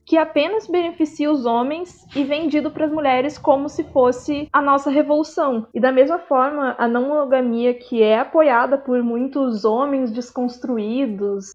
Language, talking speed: Portuguese, 150 wpm